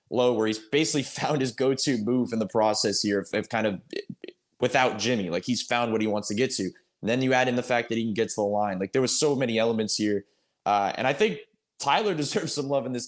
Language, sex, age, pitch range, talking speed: English, male, 20-39, 110-140 Hz, 260 wpm